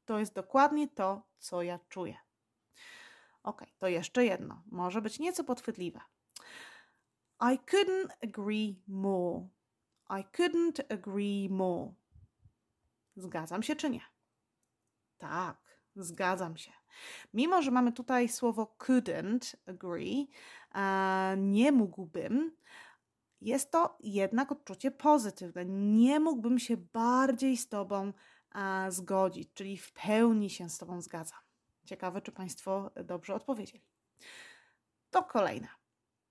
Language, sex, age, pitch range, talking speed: Polish, female, 30-49, 185-270 Hz, 105 wpm